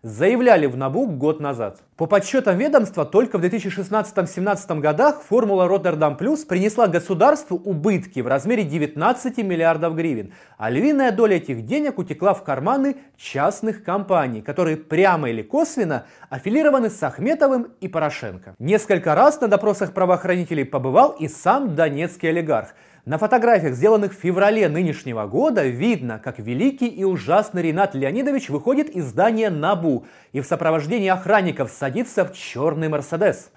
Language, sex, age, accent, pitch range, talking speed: Russian, male, 30-49, native, 155-220 Hz, 140 wpm